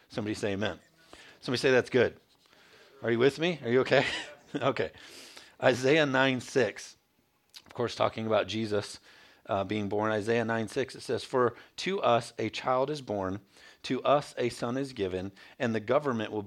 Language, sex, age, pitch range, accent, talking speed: English, male, 40-59, 105-140 Hz, American, 170 wpm